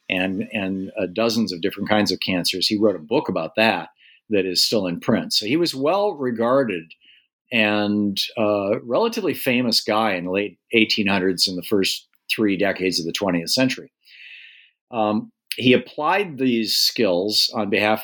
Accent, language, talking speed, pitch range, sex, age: American, English, 165 wpm, 95-110 Hz, male, 50-69